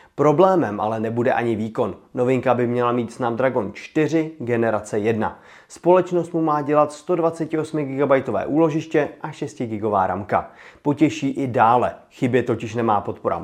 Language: Czech